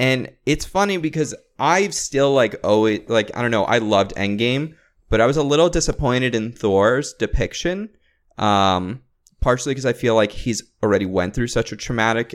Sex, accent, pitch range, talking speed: male, American, 95-125 Hz, 180 wpm